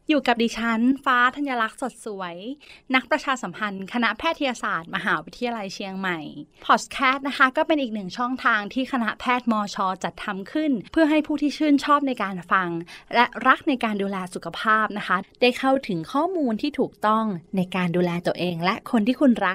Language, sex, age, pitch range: Thai, female, 20-39, 205-280 Hz